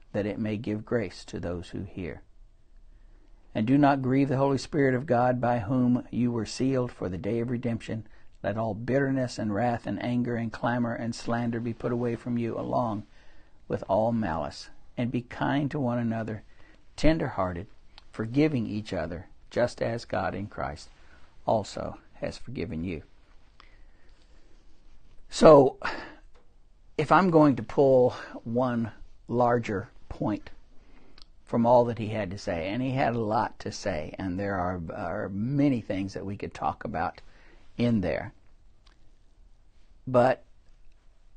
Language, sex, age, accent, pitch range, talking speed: English, male, 60-79, American, 105-125 Hz, 150 wpm